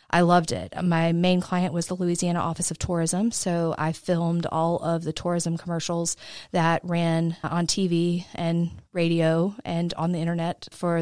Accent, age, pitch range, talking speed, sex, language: American, 30-49, 160-175 Hz, 170 wpm, female, English